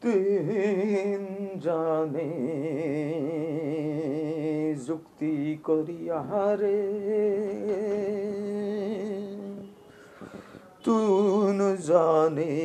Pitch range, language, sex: 155-205 Hz, Bengali, male